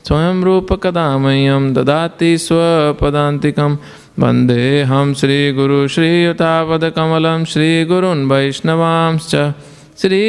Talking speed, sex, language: 95 wpm, male, English